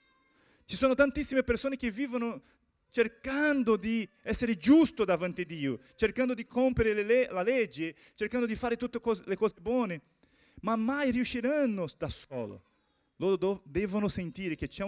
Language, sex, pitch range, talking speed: Portuguese, male, 150-240 Hz, 140 wpm